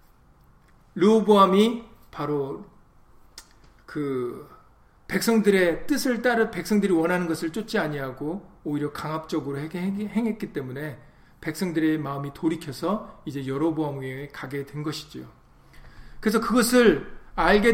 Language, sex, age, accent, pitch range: Korean, male, 40-59, native, 155-200 Hz